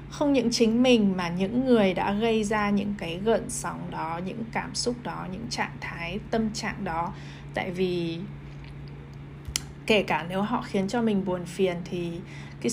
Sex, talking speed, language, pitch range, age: female, 180 wpm, Vietnamese, 175-220 Hz, 20-39